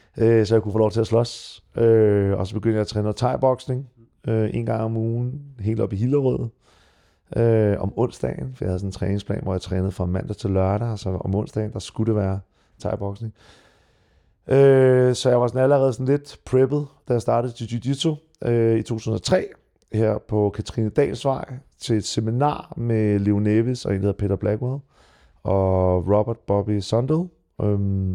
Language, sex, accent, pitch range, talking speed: Danish, male, native, 95-120 Hz, 165 wpm